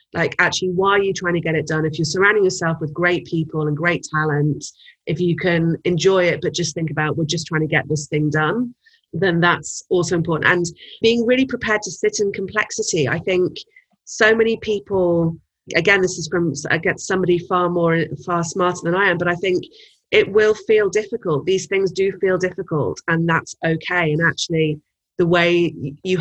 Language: English